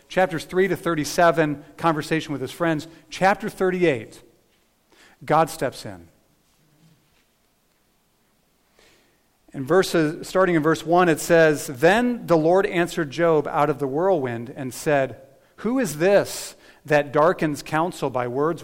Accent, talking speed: American, 125 wpm